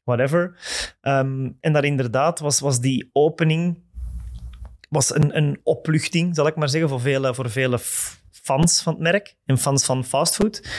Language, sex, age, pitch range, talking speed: Dutch, male, 20-39, 130-150 Hz, 160 wpm